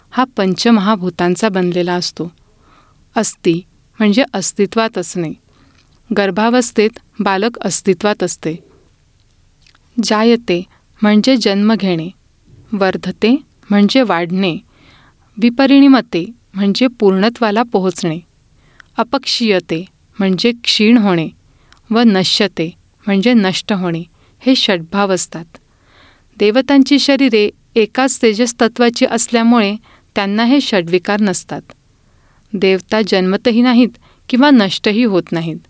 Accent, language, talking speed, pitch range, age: Indian, English, 85 wpm, 180-235 Hz, 40-59